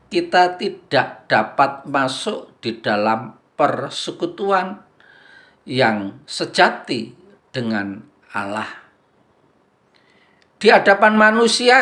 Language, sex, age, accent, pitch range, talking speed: Indonesian, male, 50-69, native, 110-175 Hz, 70 wpm